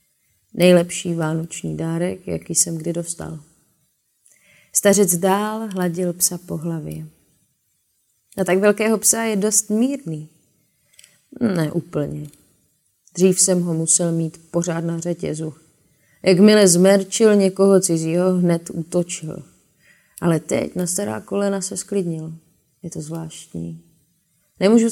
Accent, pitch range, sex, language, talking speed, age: native, 165-205 Hz, female, Czech, 115 wpm, 30-49